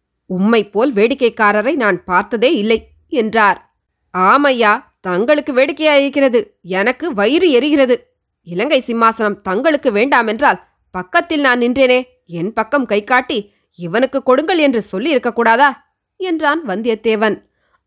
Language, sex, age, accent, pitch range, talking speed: Tamil, female, 20-39, native, 205-265 Hz, 105 wpm